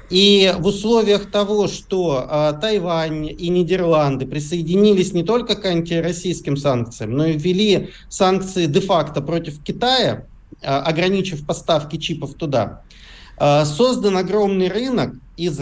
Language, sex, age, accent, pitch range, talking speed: Russian, male, 40-59, native, 155-200 Hz, 125 wpm